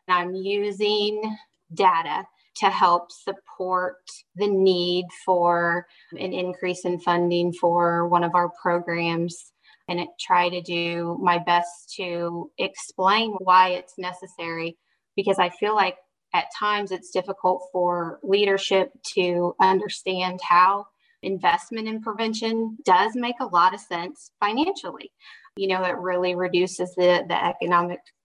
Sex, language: female, English